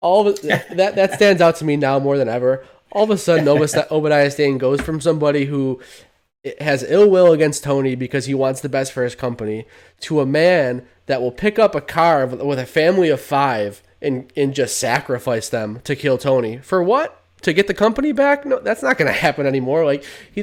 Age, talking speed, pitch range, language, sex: 20-39, 215 wpm, 125-155 Hz, English, male